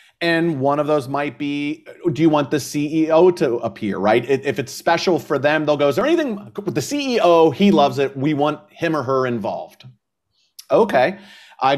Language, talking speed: English, 190 wpm